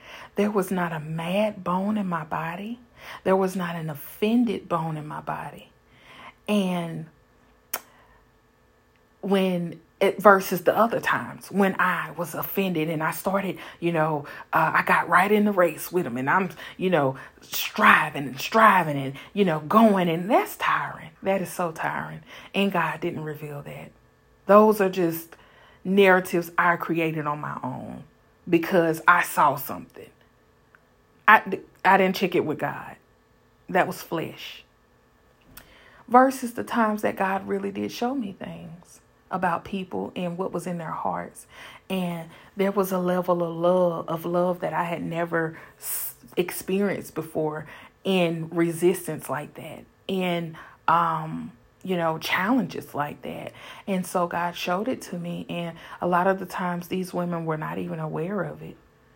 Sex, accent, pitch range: female, American, 160-195 Hz